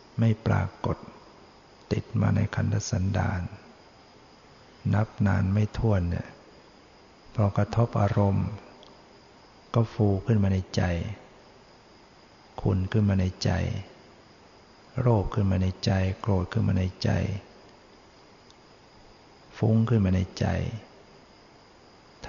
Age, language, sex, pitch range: 60-79, Thai, male, 95-110 Hz